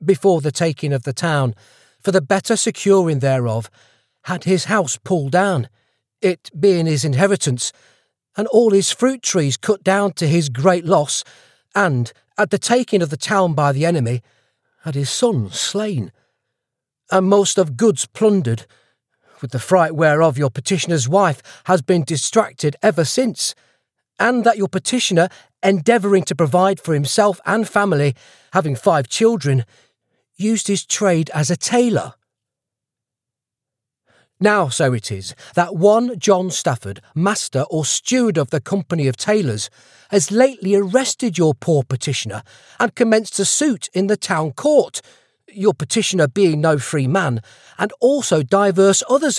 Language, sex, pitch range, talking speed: English, male, 145-210 Hz, 150 wpm